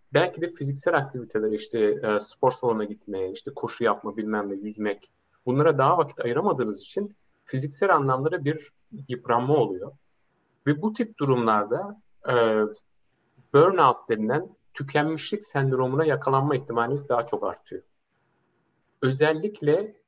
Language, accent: Turkish, native